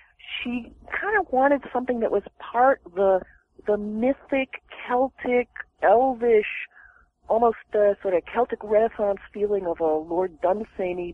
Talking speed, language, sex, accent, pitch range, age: 130 wpm, English, female, American, 180-245 Hz, 40-59